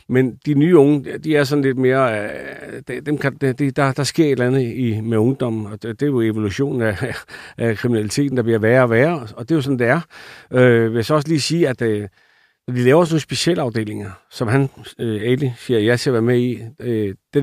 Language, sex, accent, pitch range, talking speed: Danish, male, native, 120-150 Hz, 220 wpm